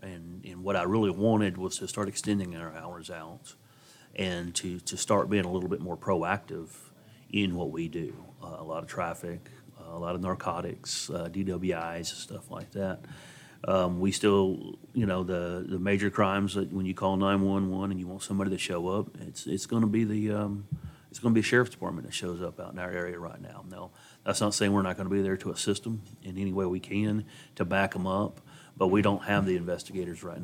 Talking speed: 225 wpm